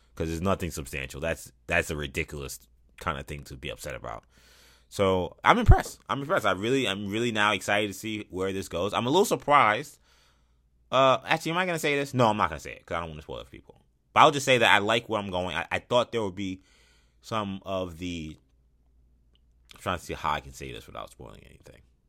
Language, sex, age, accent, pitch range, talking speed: English, male, 20-39, American, 70-100 Hz, 240 wpm